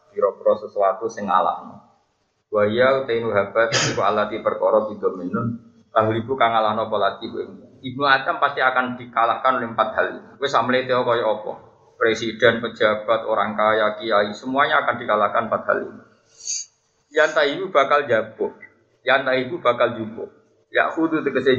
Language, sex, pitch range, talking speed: Malay, male, 115-135 Hz, 140 wpm